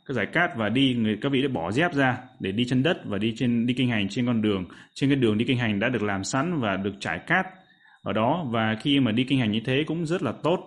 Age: 20-39